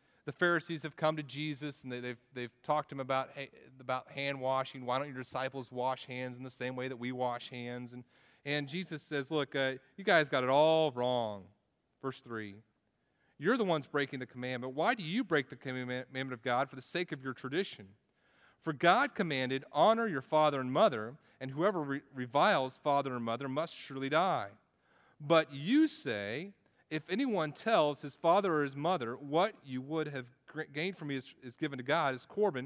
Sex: male